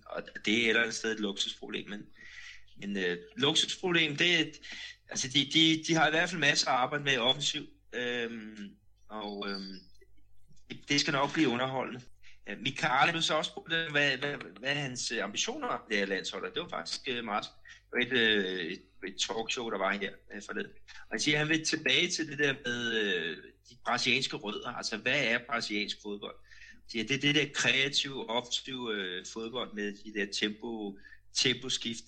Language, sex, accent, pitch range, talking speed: Danish, male, native, 105-140 Hz, 180 wpm